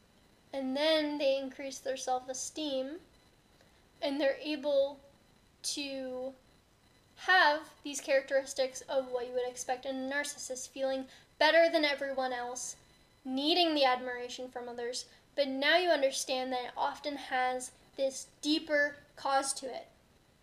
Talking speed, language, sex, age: 130 wpm, English, female, 10-29